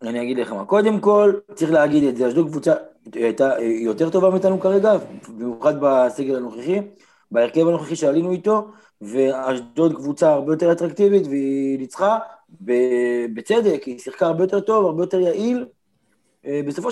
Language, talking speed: Hebrew, 150 wpm